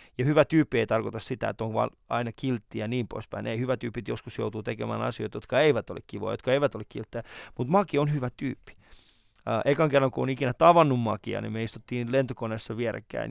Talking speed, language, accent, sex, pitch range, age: 205 wpm, Finnish, native, male, 110-145 Hz, 20-39